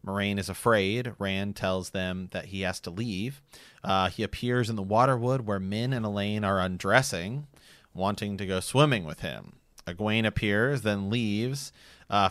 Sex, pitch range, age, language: male, 95-110 Hz, 30-49, English